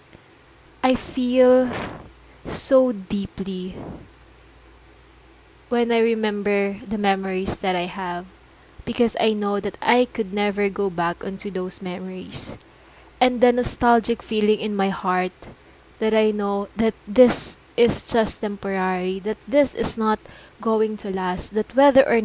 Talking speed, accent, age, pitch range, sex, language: 130 wpm, Filipino, 20-39, 195-230 Hz, female, English